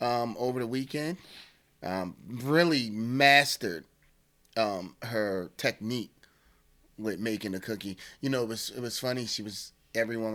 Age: 30-49